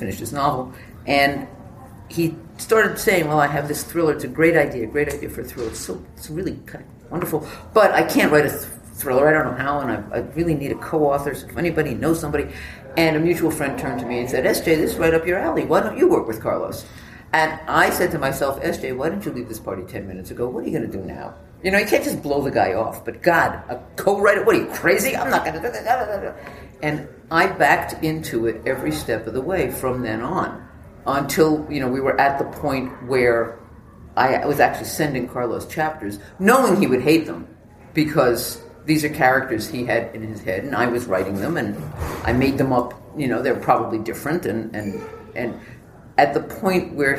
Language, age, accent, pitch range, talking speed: English, 50-69, American, 115-155 Hz, 230 wpm